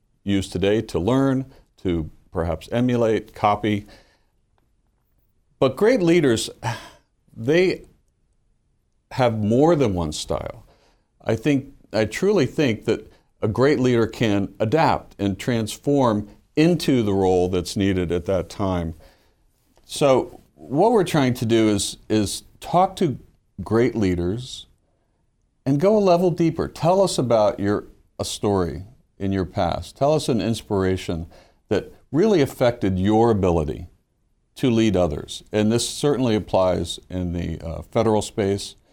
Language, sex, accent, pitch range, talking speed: English, male, American, 95-120 Hz, 130 wpm